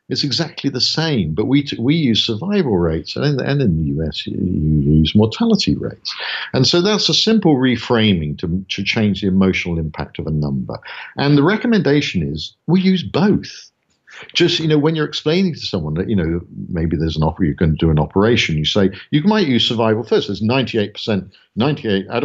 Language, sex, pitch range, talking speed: English, male, 90-150 Hz, 215 wpm